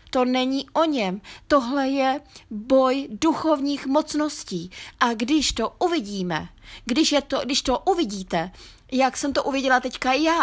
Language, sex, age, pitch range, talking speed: Czech, female, 20-39, 235-275 Hz, 145 wpm